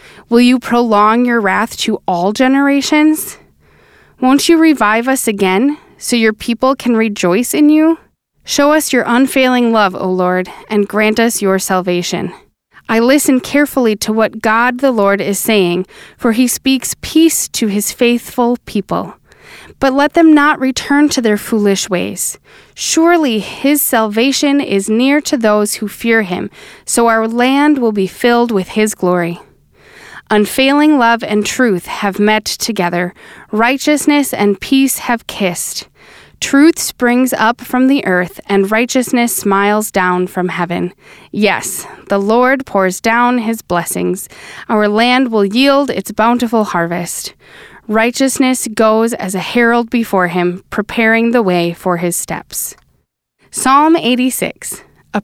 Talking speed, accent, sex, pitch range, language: 145 wpm, American, female, 200-260 Hz, English